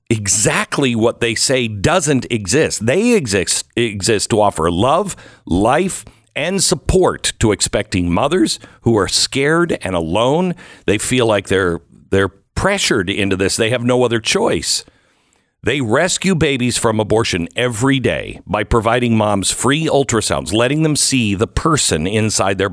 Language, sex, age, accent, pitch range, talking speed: English, male, 50-69, American, 105-150 Hz, 145 wpm